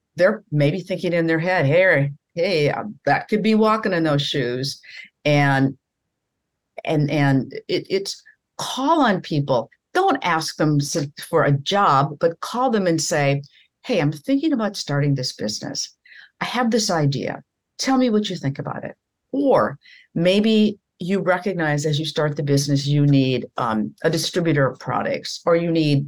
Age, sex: 50-69, female